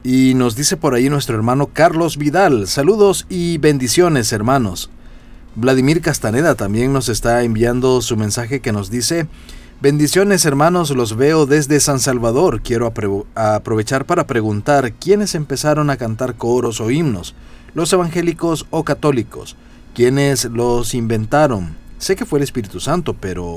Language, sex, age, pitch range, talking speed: Spanish, male, 40-59, 105-145 Hz, 145 wpm